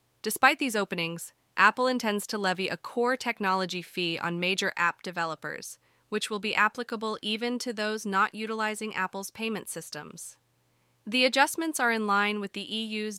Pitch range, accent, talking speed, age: 175-215 Hz, American, 160 wpm, 20-39